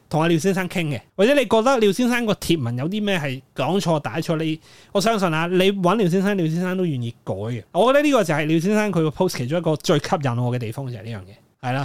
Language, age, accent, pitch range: Chinese, 20-39, native, 135-185 Hz